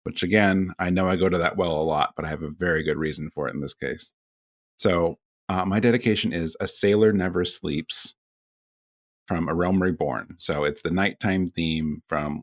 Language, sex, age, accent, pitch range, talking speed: English, male, 30-49, American, 80-110 Hz, 205 wpm